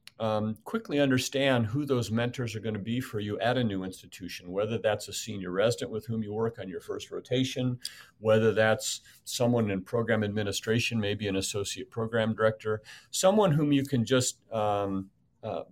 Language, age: English, 50-69